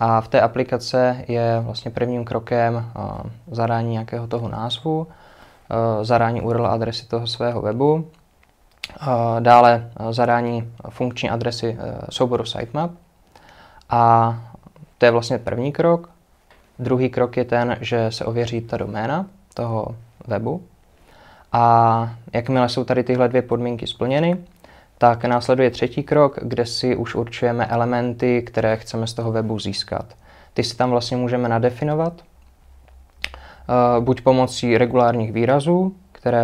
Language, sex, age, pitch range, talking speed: Czech, male, 20-39, 115-125 Hz, 125 wpm